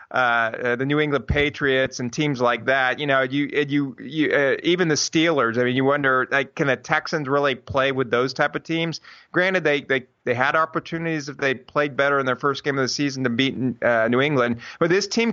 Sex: male